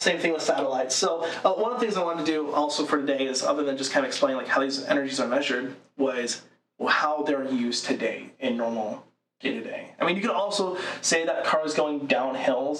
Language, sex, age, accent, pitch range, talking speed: English, male, 20-39, American, 140-180 Hz, 245 wpm